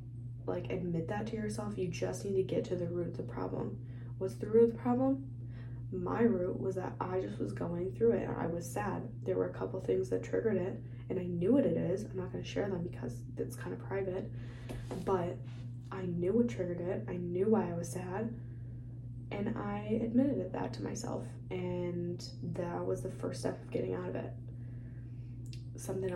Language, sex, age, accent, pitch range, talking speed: English, female, 10-29, American, 110-125 Hz, 210 wpm